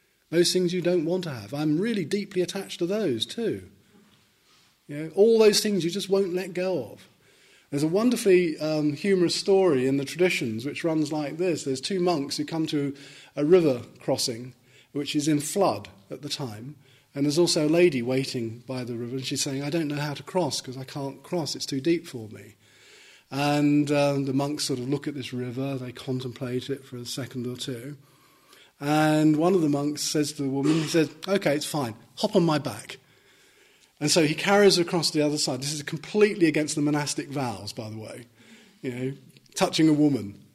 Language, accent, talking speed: English, British, 205 wpm